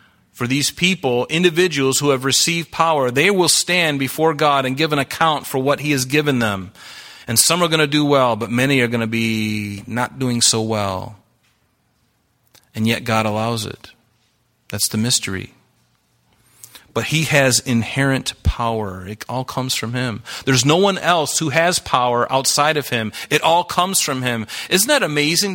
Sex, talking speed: male, 180 wpm